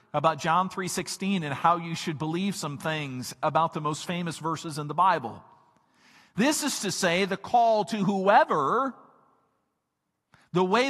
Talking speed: 155 wpm